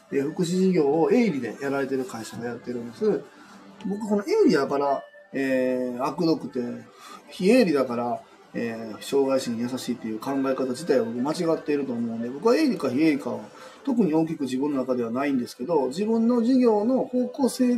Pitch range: 135-220 Hz